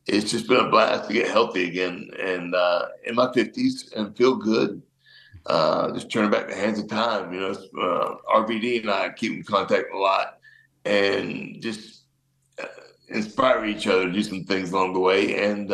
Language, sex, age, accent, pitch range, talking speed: English, male, 60-79, American, 100-130 Hz, 190 wpm